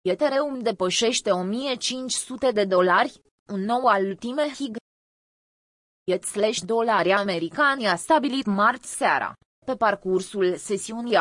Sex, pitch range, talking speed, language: female, 185-245 Hz, 100 wpm, Romanian